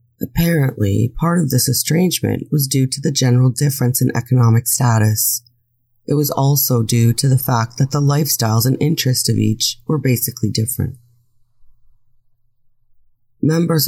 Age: 30-49